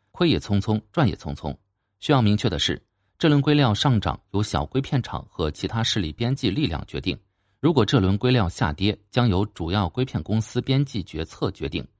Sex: male